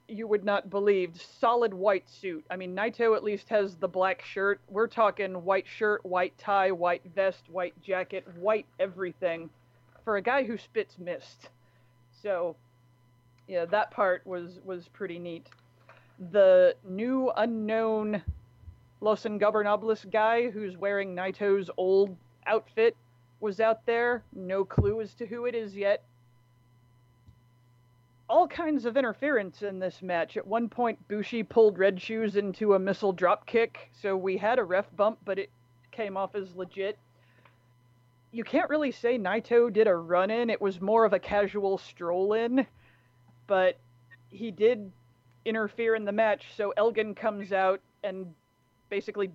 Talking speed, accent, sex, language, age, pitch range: 150 wpm, American, female, English, 30-49, 170-215 Hz